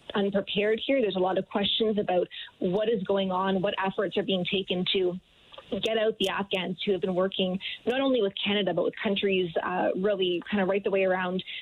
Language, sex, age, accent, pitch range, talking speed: English, female, 20-39, American, 185-210 Hz, 210 wpm